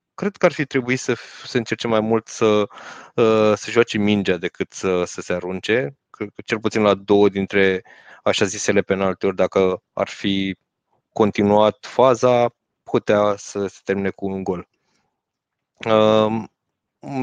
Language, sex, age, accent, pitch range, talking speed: Romanian, male, 20-39, native, 100-115 Hz, 145 wpm